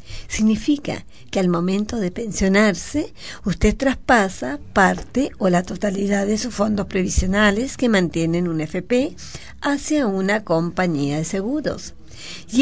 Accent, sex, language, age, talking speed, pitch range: American, female, Spanish, 40-59, 125 wpm, 160-230 Hz